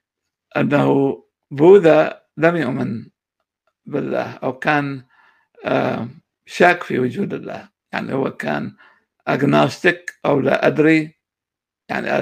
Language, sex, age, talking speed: Arabic, male, 60-79, 95 wpm